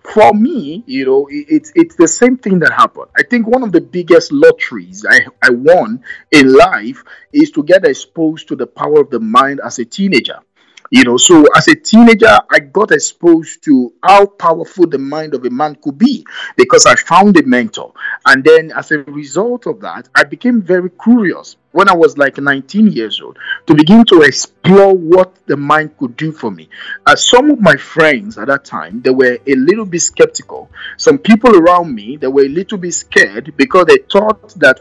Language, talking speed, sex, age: English, 205 wpm, male, 50-69